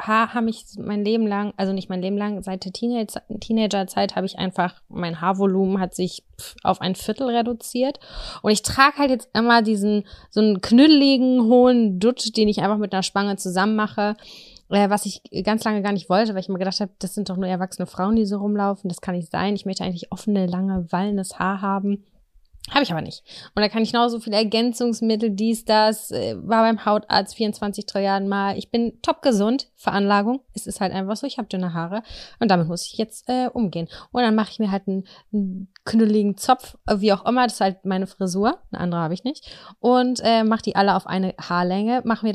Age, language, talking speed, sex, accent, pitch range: 20-39, German, 215 wpm, female, German, 190-225 Hz